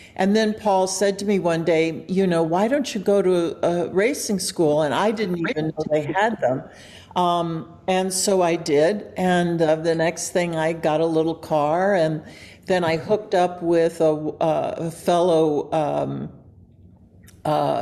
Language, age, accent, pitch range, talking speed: English, 60-79, American, 160-190 Hz, 180 wpm